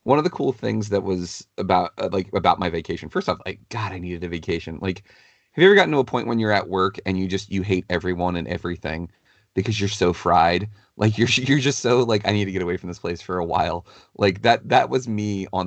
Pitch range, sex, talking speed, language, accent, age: 90-110 Hz, male, 255 wpm, English, American, 30-49